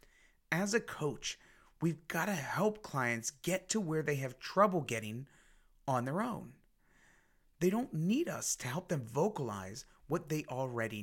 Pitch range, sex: 130-185 Hz, male